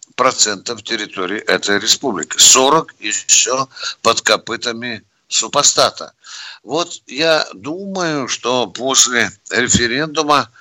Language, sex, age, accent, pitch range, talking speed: Russian, male, 60-79, native, 115-165 Hz, 85 wpm